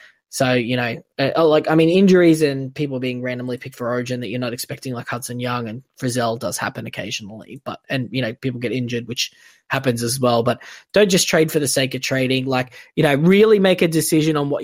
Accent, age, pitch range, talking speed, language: Australian, 20-39, 125-155 Hz, 225 wpm, English